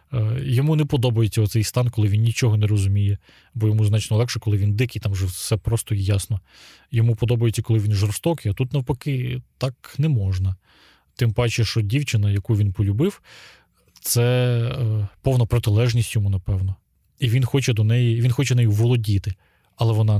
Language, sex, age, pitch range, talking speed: Ukrainian, male, 20-39, 105-120 Hz, 170 wpm